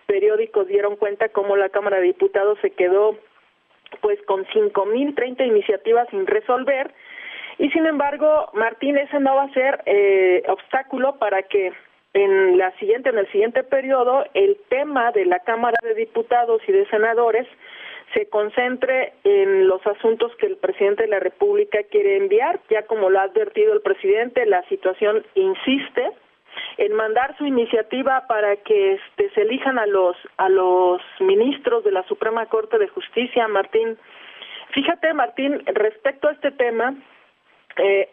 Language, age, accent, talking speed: Spanish, 40-59, Mexican, 150 wpm